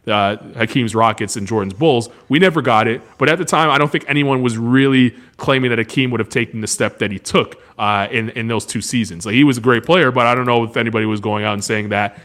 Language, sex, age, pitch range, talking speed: English, male, 20-39, 115-150 Hz, 265 wpm